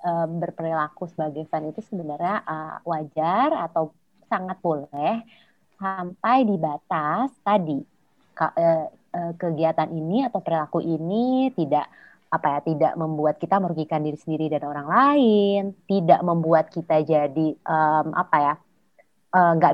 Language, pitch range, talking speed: Indonesian, 160-210 Hz, 125 wpm